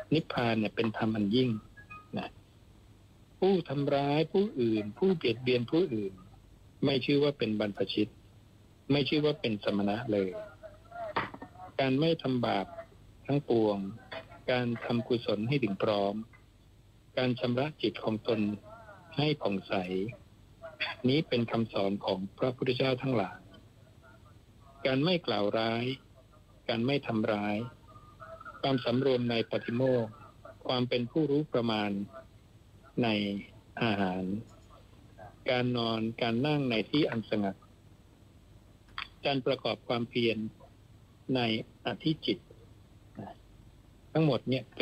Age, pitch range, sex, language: 60-79, 105-125 Hz, male, Thai